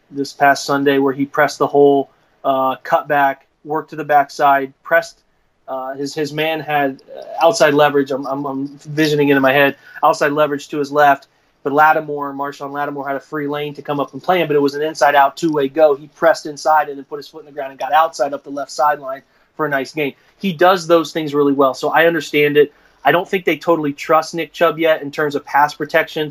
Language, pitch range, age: English, 140-155 Hz, 30-49